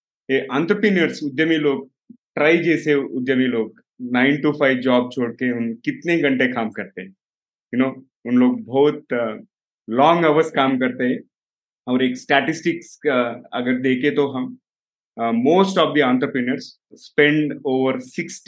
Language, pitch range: Hindi, 130-165 Hz